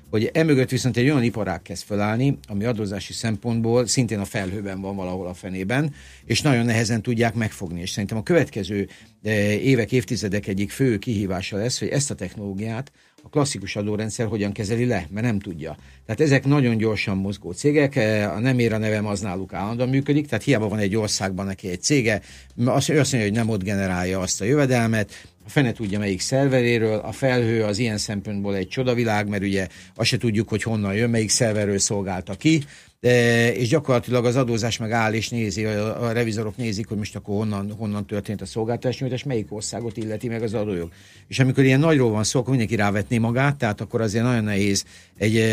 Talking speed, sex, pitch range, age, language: 195 wpm, male, 100-125 Hz, 50-69, Hungarian